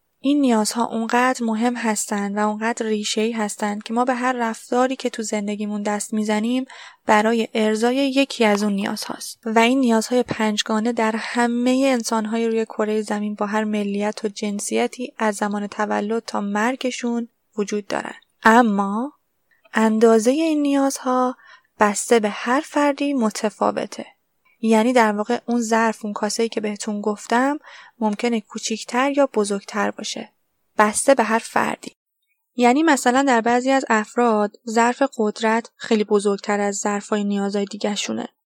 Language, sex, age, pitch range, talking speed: Persian, female, 20-39, 215-245 Hz, 145 wpm